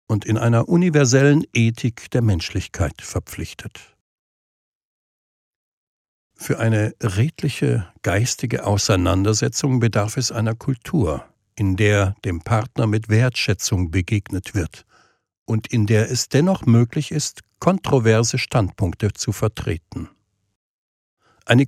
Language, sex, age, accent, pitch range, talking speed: German, male, 60-79, German, 100-135 Hz, 100 wpm